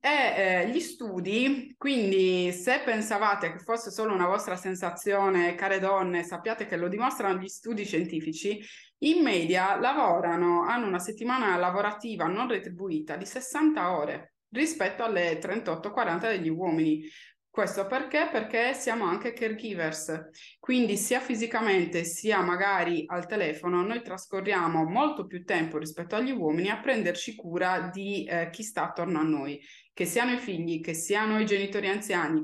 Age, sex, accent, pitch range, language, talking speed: 20-39, female, native, 175-235 Hz, Italian, 145 wpm